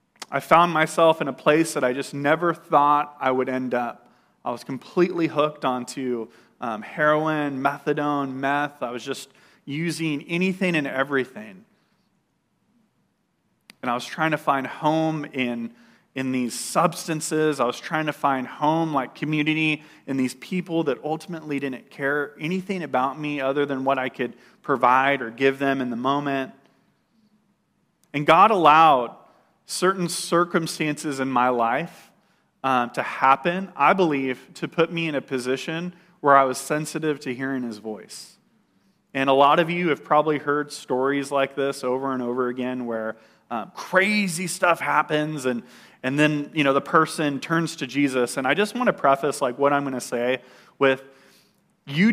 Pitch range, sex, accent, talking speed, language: 130-160 Hz, male, American, 165 wpm, English